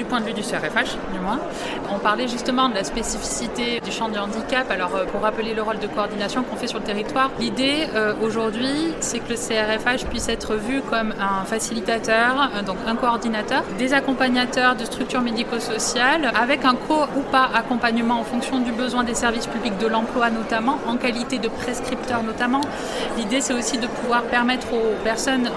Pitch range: 220-255 Hz